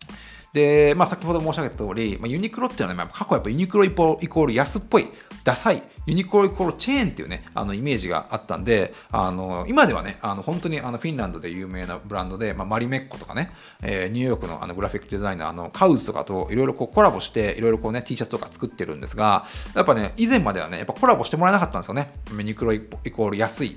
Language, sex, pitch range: Japanese, male, 100-160 Hz